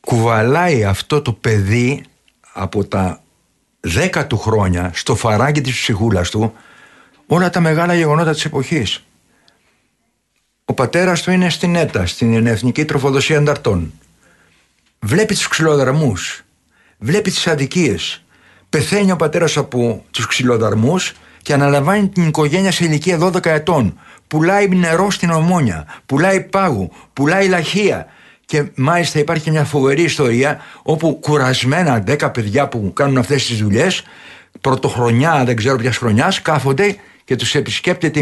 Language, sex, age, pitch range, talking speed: Greek, male, 60-79, 125-165 Hz, 130 wpm